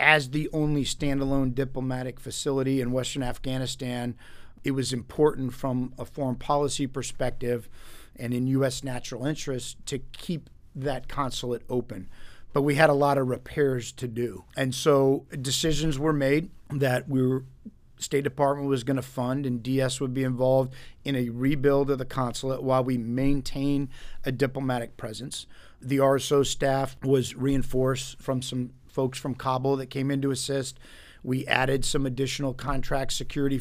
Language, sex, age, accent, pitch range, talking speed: English, male, 50-69, American, 130-145 Hz, 155 wpm